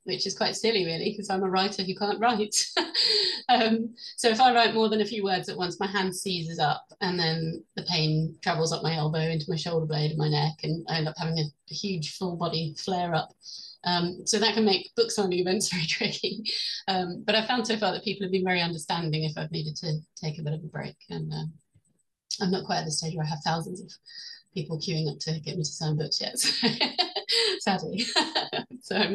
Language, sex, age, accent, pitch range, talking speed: English, female, 30-49, British, 165-205 Hz, 235 wpm